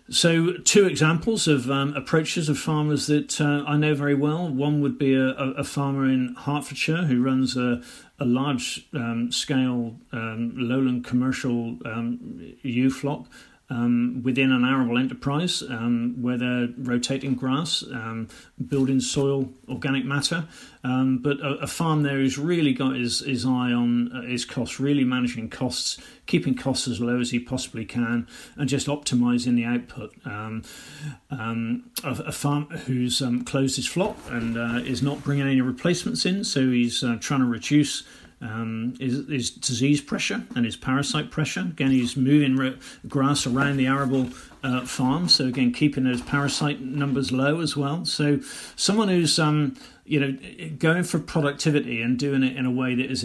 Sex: male